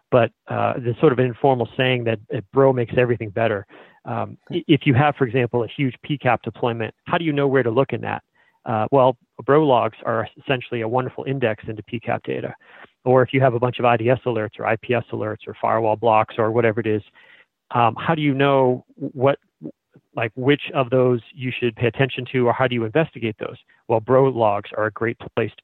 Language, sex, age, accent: English, male, 40-59, American